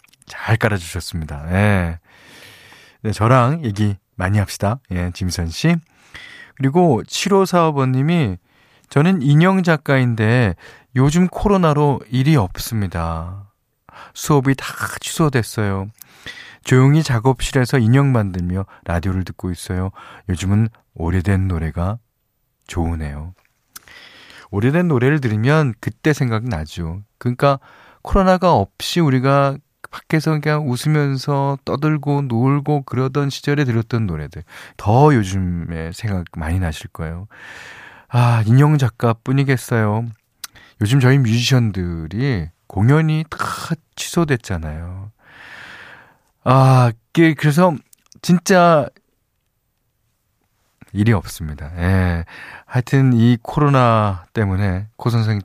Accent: native